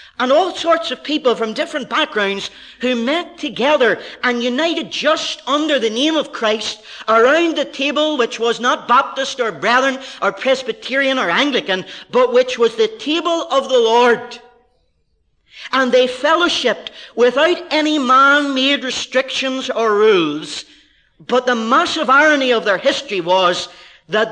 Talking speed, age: 145 wpm, 40-59